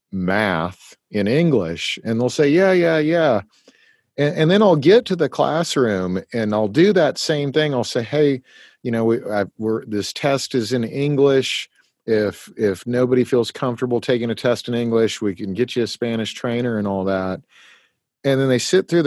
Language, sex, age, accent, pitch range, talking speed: English, male, 40-59, American, 110-150 Hz, 190 wpm